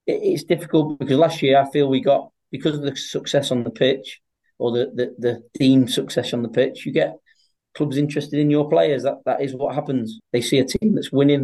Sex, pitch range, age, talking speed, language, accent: male, 125-140 Hz, 30-49, 225 wpm, English, British